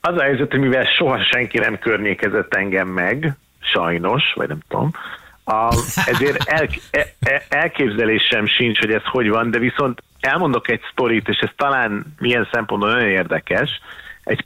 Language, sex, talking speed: Hungarian, male, 160 wpm